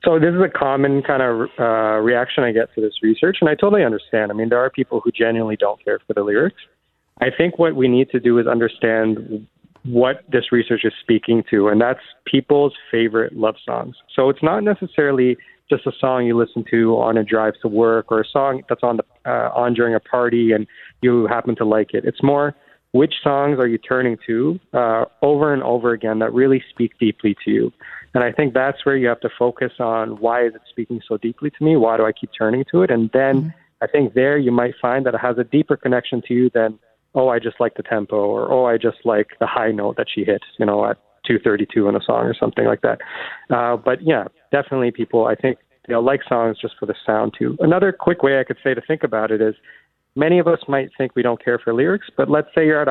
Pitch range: 115-135 Hz